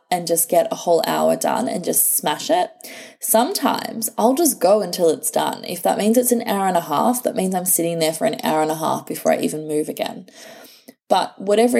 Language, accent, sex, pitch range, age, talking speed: English, Australian, female, 155-225 Hz, 20-39, 230 wpm